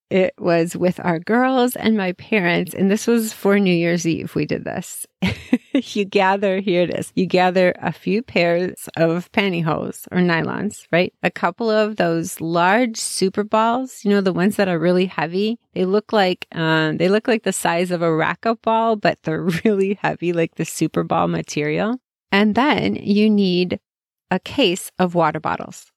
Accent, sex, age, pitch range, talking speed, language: American, female, 30-49, 175-225 Hz, 185 wpm, English